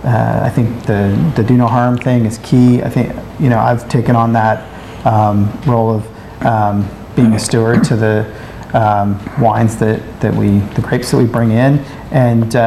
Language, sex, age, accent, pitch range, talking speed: English, male, 40-59, American, 110-120 Hz, 190 wpm